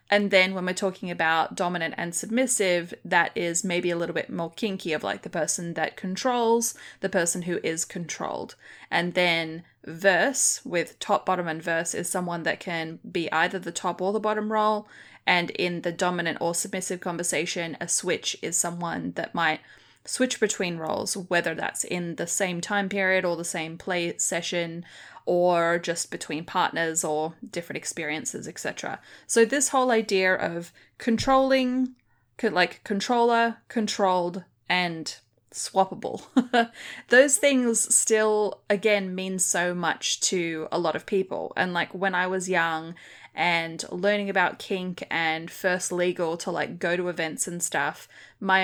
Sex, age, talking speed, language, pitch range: female, 20-39, 160 wpm, English, 170-200 Hz